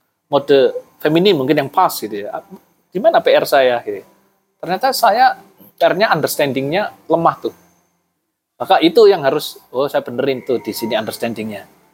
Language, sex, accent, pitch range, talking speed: Indonesian, male, native, 140-195 Hz, 145 wpm